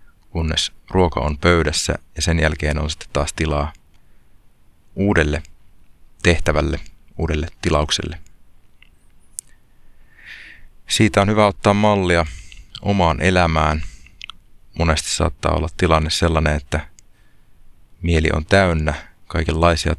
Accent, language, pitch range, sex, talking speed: native, Finnish, 75-90 Hz, male, 95 wpm